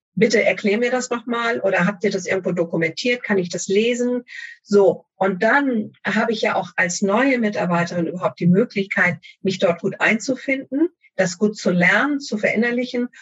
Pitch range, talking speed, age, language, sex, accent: 175-220 Hz, 175 wpm, 50-69, German, female, German